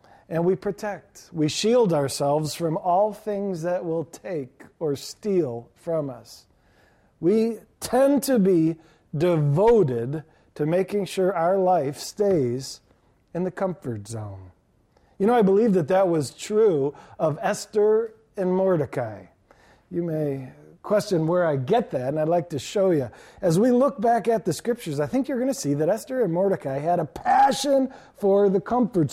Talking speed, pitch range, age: 165 wpm, 150-215 Hz, 40-59